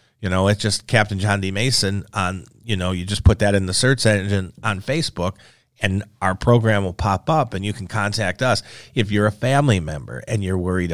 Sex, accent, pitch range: male, American, 100-125 Hz